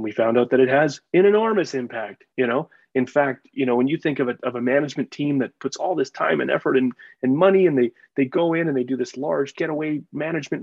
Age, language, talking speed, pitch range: 30-49, English, 255 wpm, 120-140 Hz